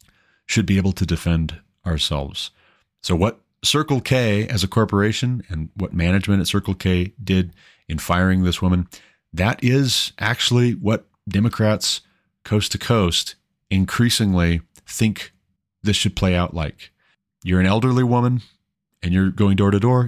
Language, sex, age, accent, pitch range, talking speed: English, male, 30-49, American, 85-105 Hz, 145 wpm